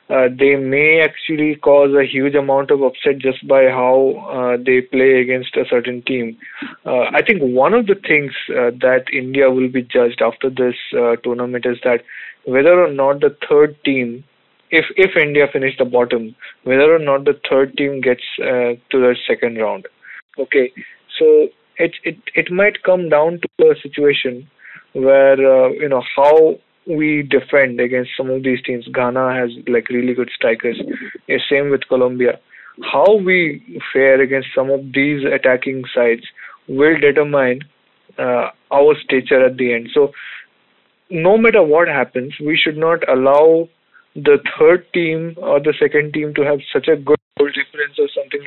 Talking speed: 170 wpm